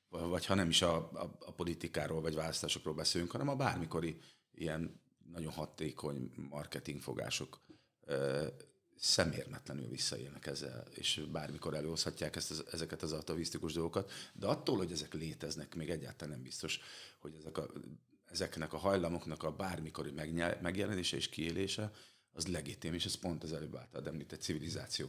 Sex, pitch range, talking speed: male, 80-90 Hz, 145 wpm